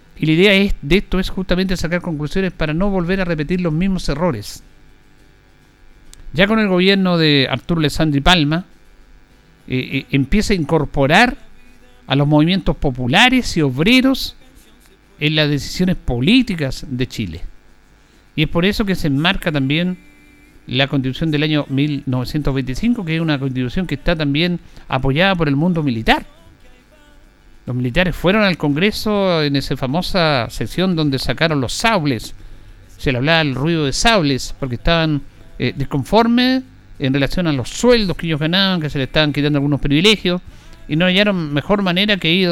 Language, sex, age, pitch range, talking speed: Spanish, male, 50-69, 135-185 Hz, 160 wpm